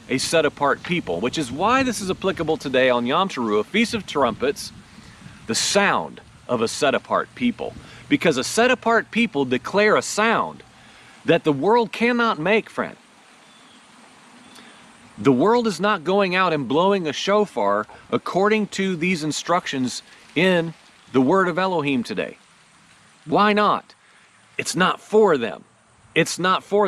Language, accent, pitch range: English, American, 145-205 Hz